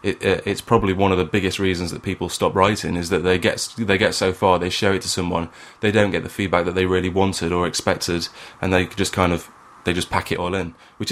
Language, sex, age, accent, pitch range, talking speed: English, male, 20-39, British, 95-115 Hz, 265 wpm